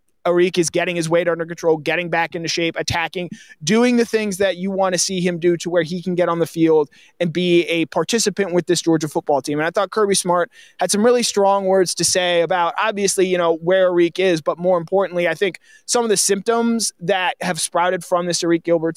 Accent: American